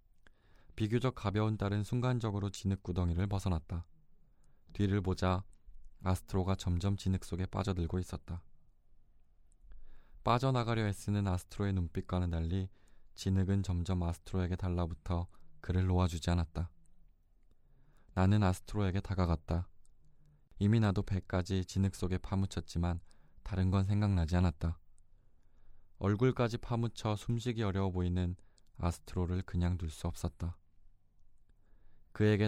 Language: Korean